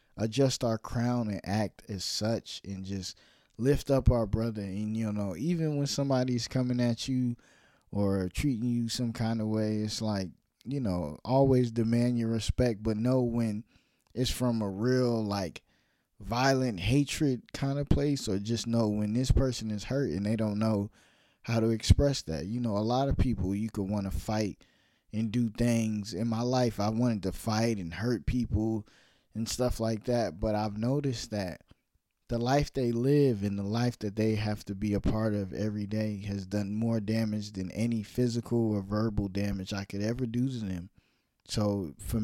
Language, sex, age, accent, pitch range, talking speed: English, male, 20-39, American, 100-120 Hz, 190 wpm